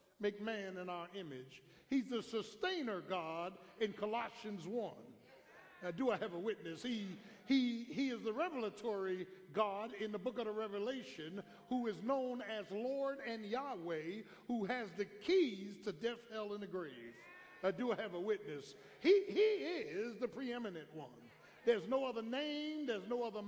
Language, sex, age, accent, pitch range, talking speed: English, male, 60-79, American, 220-295 Hz, 170 wpm